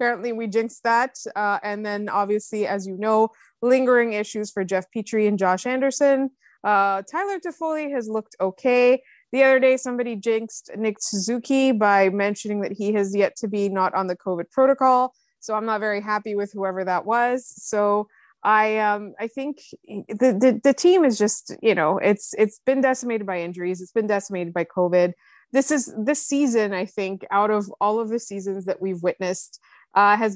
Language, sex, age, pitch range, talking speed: English, female, 20-39, 195-240 Hz, 190 wpm